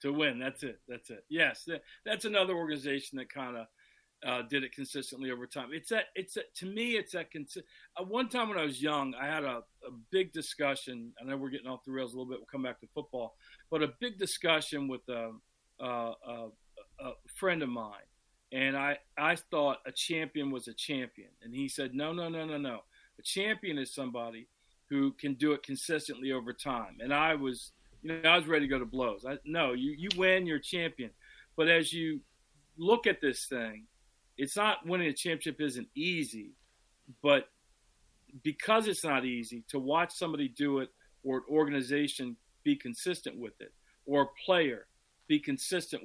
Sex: male